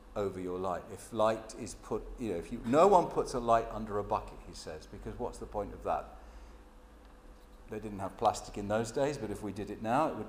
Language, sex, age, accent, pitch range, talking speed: English, male, 50-69, British, 105-135 Hz, 245 wpm